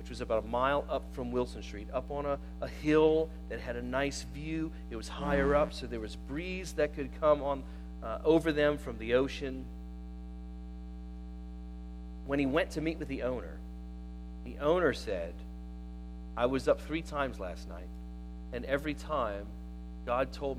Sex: male